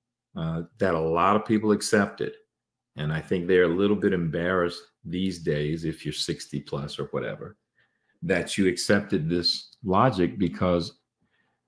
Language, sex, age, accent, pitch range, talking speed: English, male, 40-59, American, 85-100 Hz, 150 wpm